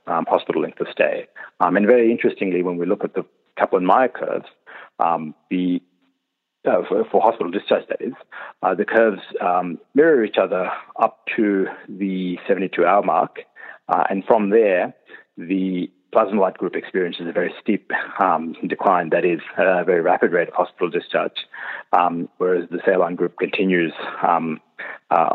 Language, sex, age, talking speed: English, male, 30-49, 165 wpm